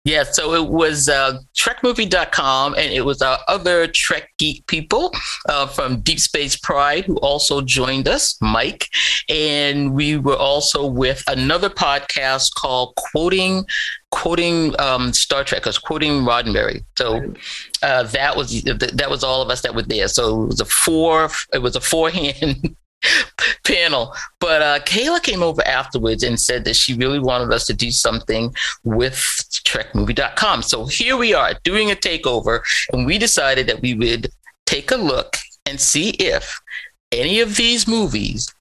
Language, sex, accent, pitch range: English, male, American, 125-170 Hz